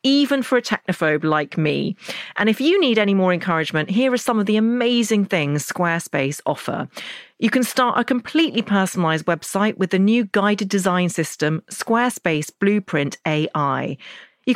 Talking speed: 160 wpm